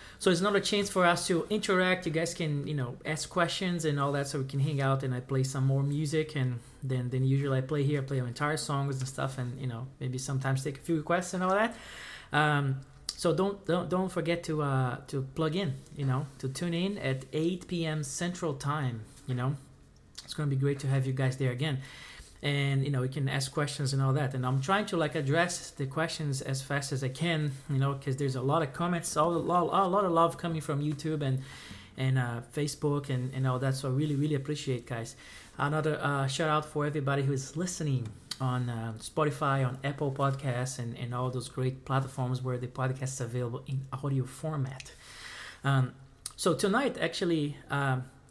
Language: English